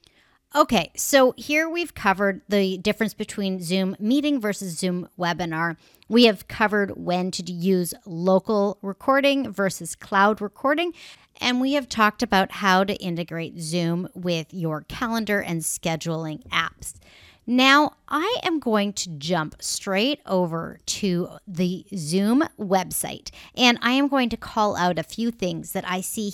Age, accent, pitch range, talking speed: 30-49, American, 180-240 Hz, 145 wpm